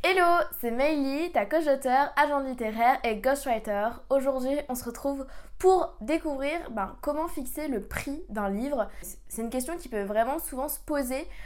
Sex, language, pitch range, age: female, French, 210-275 Hz, 20-39